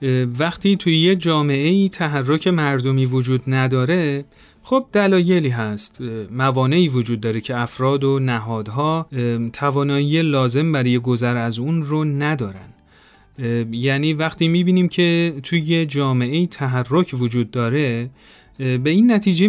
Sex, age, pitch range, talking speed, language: male, 40-59, 130-175 Hz, 125 wpm, Persian